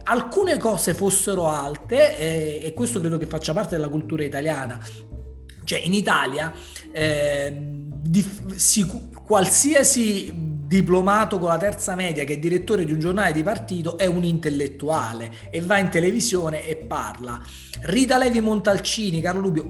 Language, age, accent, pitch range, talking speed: Italian, 40-59, native, 160-210 Hz, 135 wpm